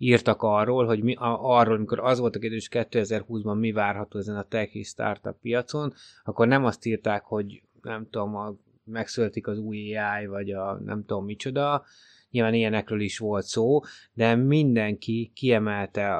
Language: Hungarian